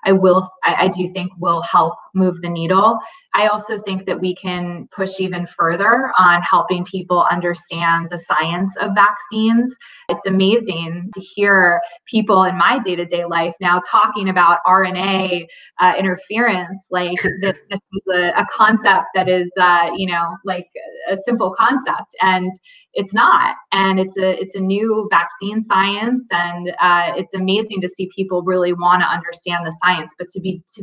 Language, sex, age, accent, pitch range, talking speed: English, female, 20-39, American, 175-195 Hz, 170 wpm